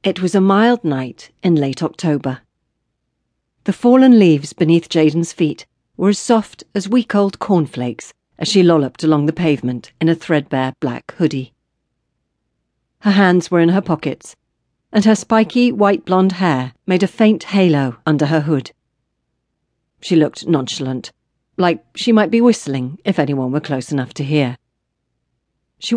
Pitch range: 135-195 Hz